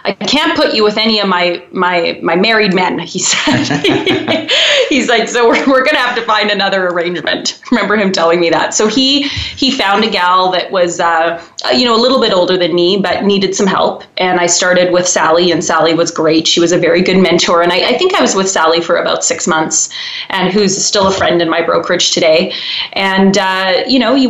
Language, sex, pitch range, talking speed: English, female, 180-215 Hz, 225 wpm